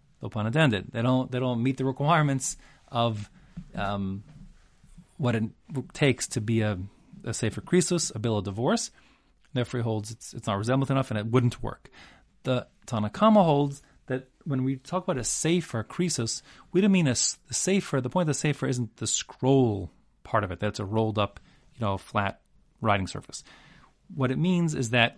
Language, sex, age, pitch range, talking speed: English, male, 30-49, 110-145 Hz, 175 wpm